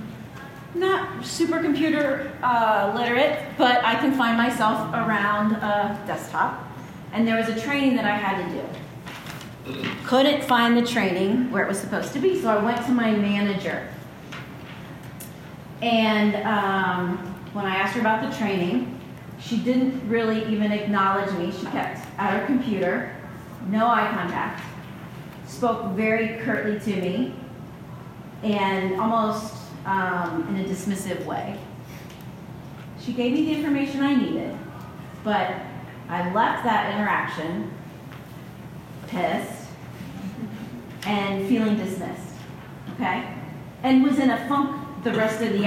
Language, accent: English, American